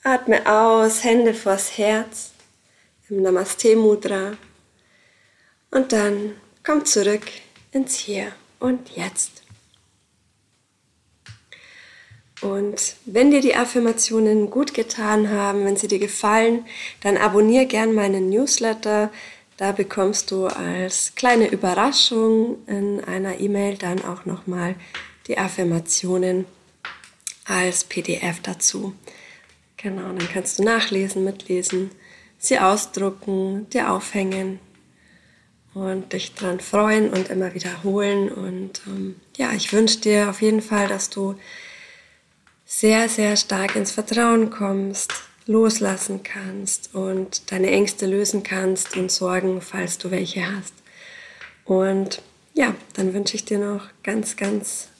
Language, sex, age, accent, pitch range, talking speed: German, female, 20-39, German, 190-220 Hz, 115 wpm